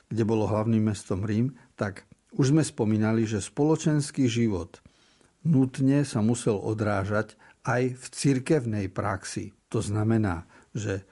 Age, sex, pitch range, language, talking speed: 50-69, male, 105-125 Hz, Slovak, 125 wpm